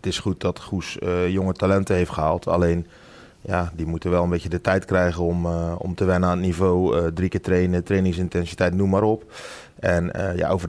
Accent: Dutch